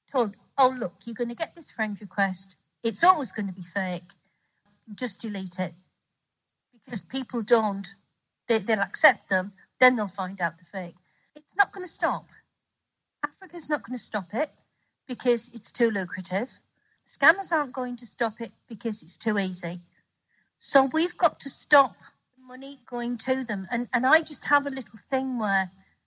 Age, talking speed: 50-69, 170 wpm